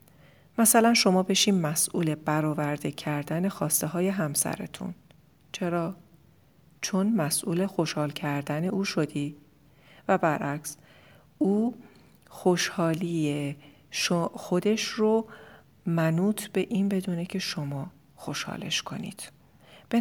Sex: female